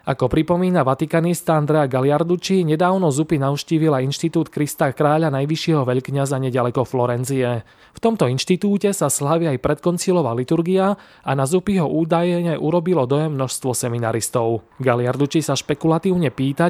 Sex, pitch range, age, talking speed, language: male, 130-175 Hz, 20-39, 130 wpm, Slovak